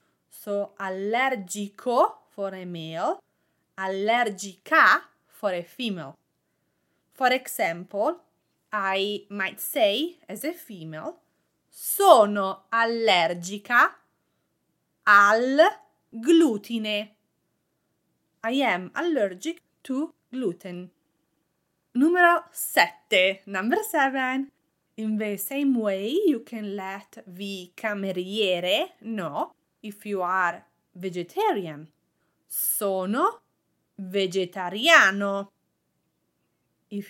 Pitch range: 190-265 Hz